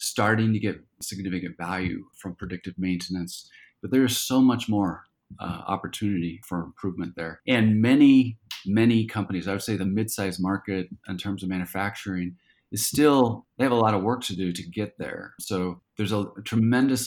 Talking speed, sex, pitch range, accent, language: 180 wpm, male, 95-110 Hz, American, English